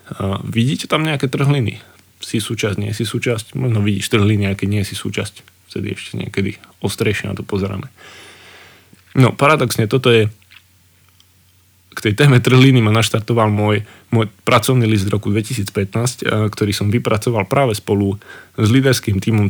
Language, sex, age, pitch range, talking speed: Slovak, male, 20-39, 95-115 Hz, 155 wpm